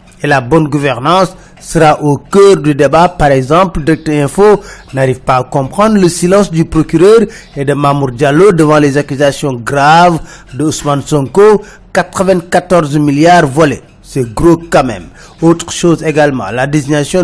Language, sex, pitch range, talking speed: French, male, 145-175 Hz, 155 wpm